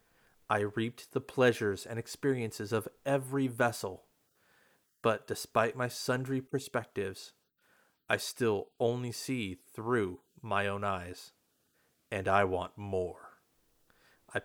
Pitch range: 100-120 Hz